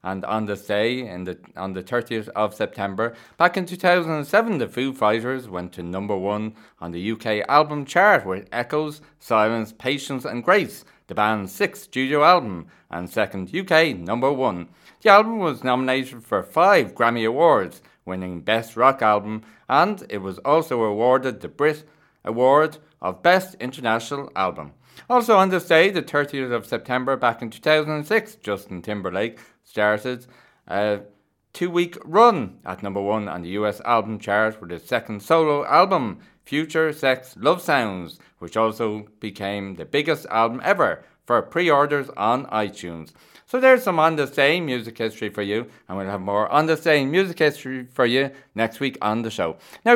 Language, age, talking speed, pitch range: English, 30-49, 165 wpm, 105-150 Hz